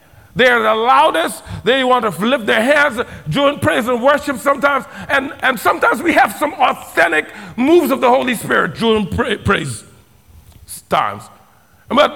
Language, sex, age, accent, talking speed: English, male, 50-69, American, 155 wpm